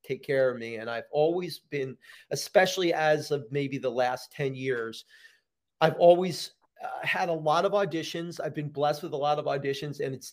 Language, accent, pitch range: English, American, 140-175 Hz